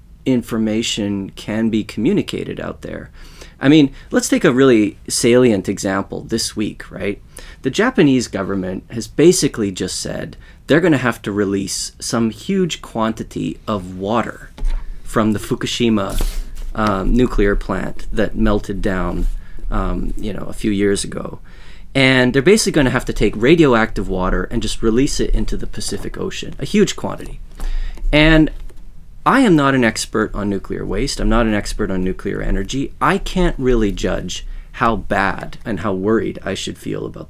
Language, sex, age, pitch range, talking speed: English, male, 30-49, 100-130 Hz, 160 wpm